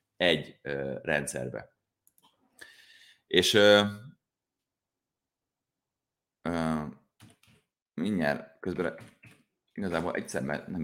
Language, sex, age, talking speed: Hungarian, male, 30-49, 55 wpm